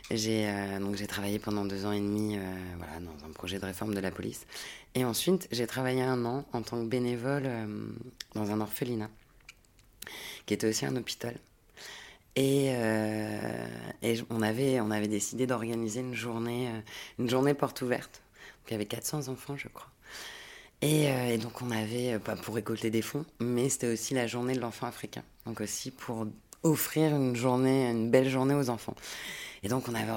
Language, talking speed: French, 190 wpm